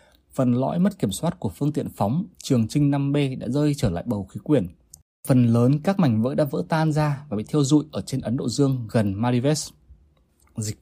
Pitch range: 100-145 Hz